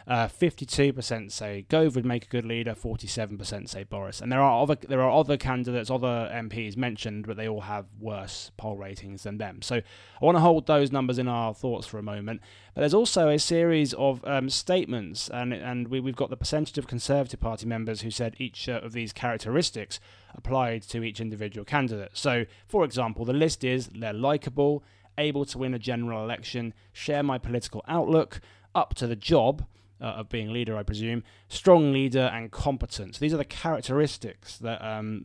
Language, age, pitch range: English, 20-39, 110-140 Hz